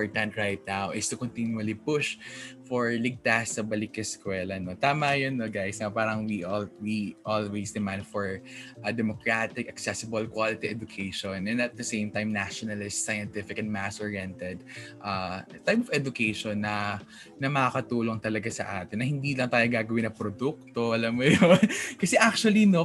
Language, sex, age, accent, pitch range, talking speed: Filipino, male, 20-39, native, 105-160 Hz, 160 wpm